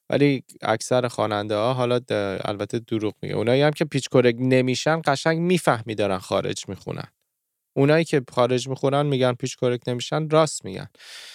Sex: male